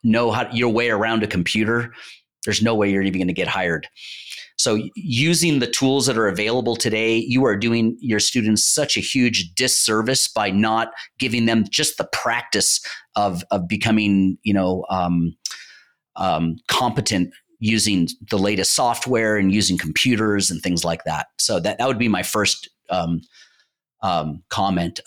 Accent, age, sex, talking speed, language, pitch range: American, 30-49, male, 165 wpm, English, 95-125 Hz